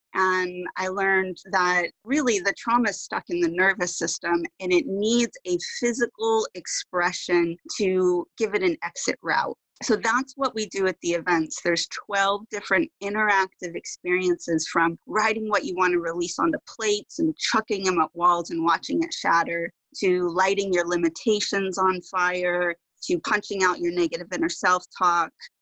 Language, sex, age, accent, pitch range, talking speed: English, female, 30-49, American, 180-215 Hz, 165 wpm